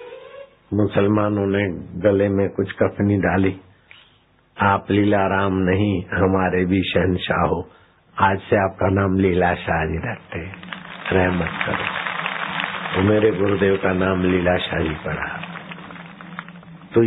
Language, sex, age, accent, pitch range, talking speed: Hindi, male, 60-79, native, 95-115 Hz, 115 wpm